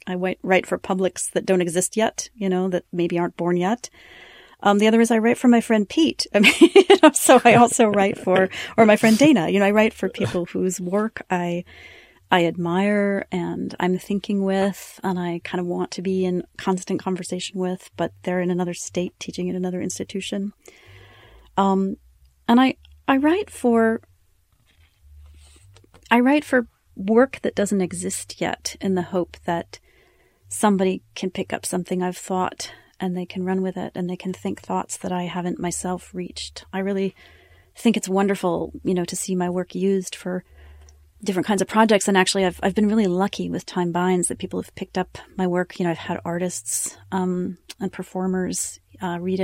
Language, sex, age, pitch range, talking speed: English, female, 40-59, 175-200 Hz, 190 wpm